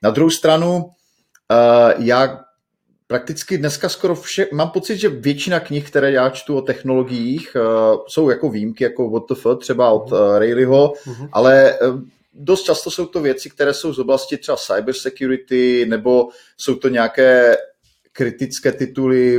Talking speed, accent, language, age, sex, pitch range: 140 wpm, native, Czech, 30-49, male, 130-155 Hz